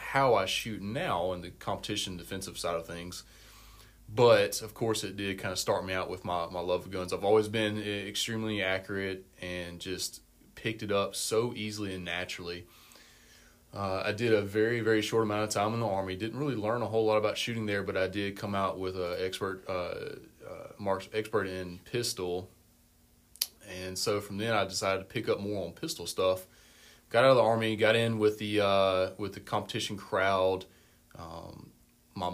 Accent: American